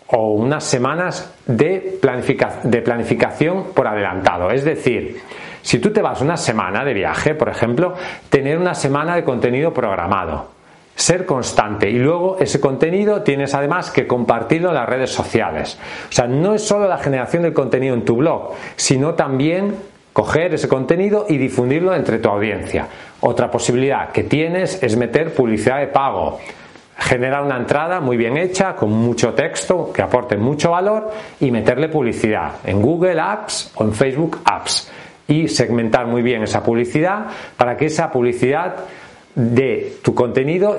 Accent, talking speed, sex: Spanish, 160 wpm, male